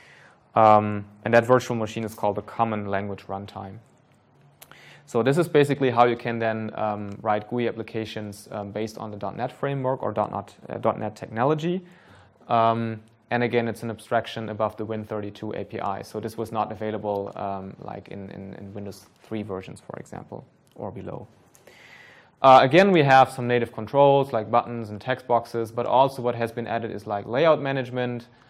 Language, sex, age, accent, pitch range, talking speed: English, male, 20-39, German, 105-125 Hz, 175 wpm